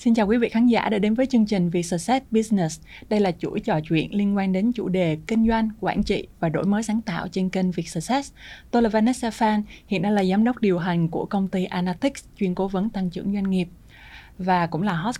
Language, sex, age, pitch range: Vietnamese, female, 20-39, 180-225 Hz